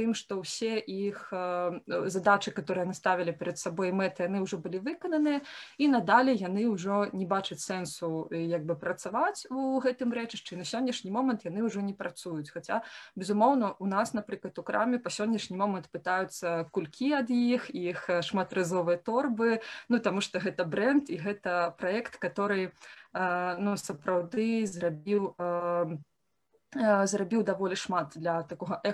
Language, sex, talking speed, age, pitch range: Russian, female, 145 wpm, 20-39, 180-220 Hz